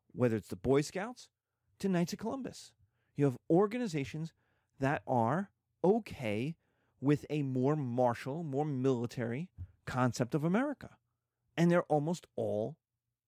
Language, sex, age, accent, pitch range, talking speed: English, male, 30-49, American, 115-170 Hz, 125 wpm